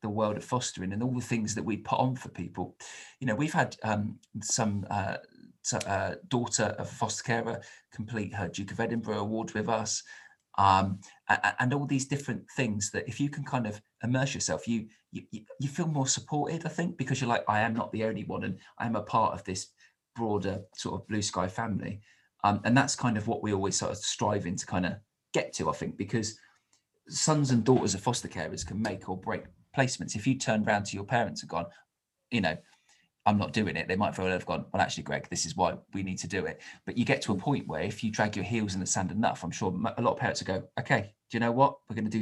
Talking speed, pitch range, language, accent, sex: 245 wpm, 100-125 Hz, English, British, male